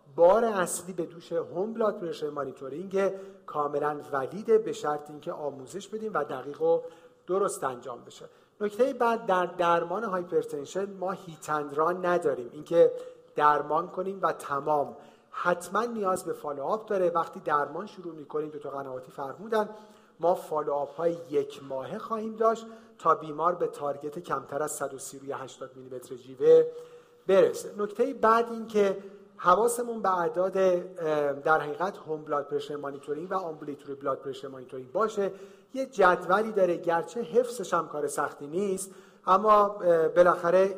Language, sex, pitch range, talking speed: Persian, male, 150-215 Hz, 130 wpm